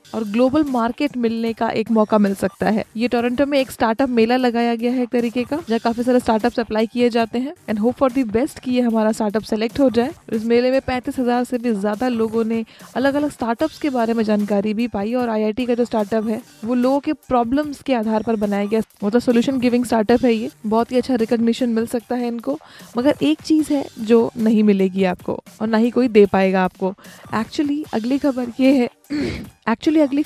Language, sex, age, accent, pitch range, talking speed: Hindi, female, 20-39, native, 225-260 Hz, 220 wpm